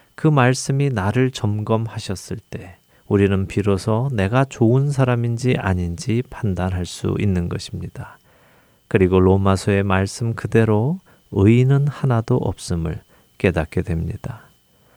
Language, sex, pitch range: Korean, male, 95-125 Hz